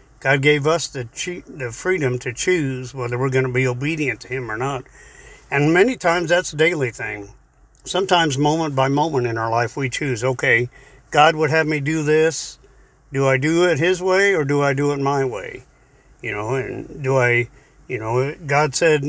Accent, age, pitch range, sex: American, 50-69, 130-155 Hz, male